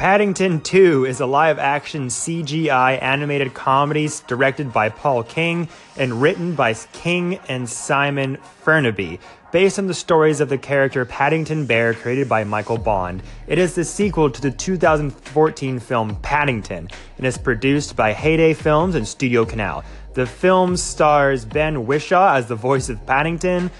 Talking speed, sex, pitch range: 150 wpm, male, 120-160 Hz